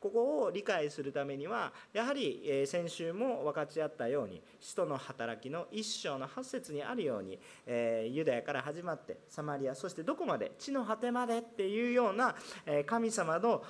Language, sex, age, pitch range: Japanese, male, 40-59, 145-235 Hz